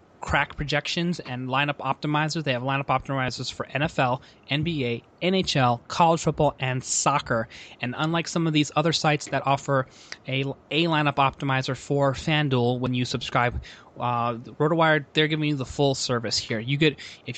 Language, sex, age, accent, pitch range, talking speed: English, male, 20-39, American, 130-155 Hz, 160 wpm